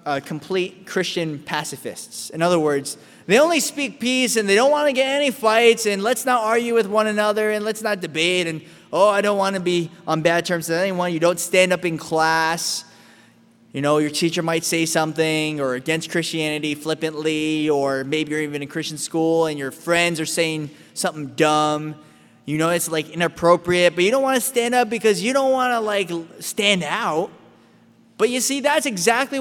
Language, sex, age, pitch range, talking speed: English, male, 20-39, 160-230 Hz, 200 wpm